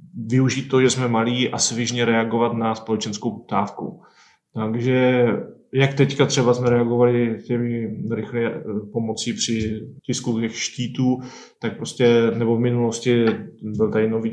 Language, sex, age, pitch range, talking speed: Czech, male, 20-39, 110-120 Hz, 135 wpm